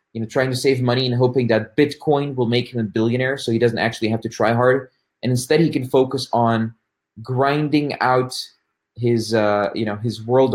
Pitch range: 115-140 Hz